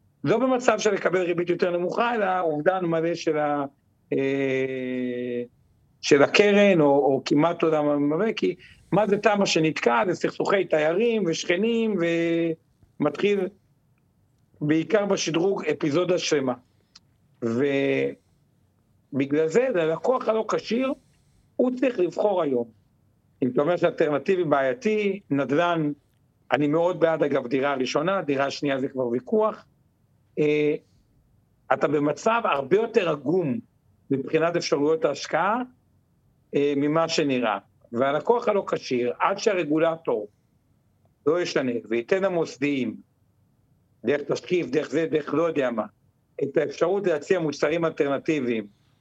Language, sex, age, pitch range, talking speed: Hebrew, male, 50-69, 130-180 Hz, 120 wpm